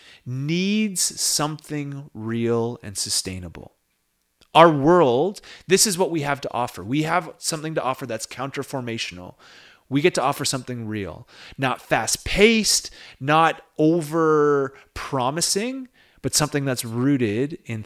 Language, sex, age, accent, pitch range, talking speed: English, male, 30-49, American, 105-145 Hz, 120 wpm